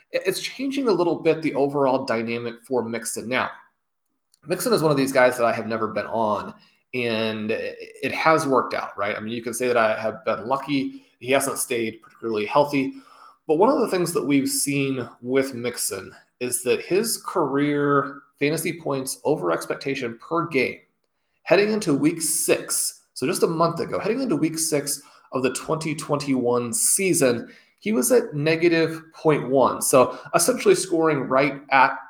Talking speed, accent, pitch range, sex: 170 wpm, American, 125-165 Hz, male